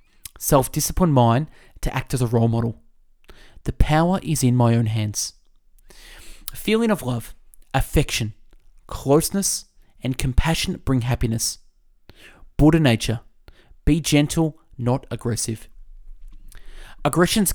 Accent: Australian